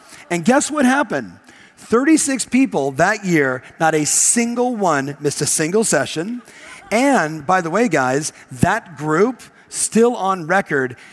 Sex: male